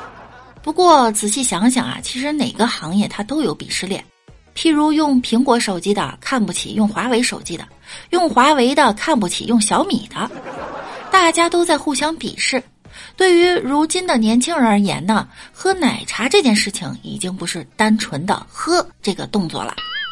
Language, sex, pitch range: Chinese, female, 210-310 Hz